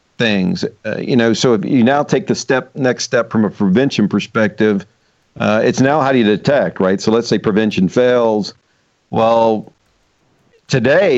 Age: 50-69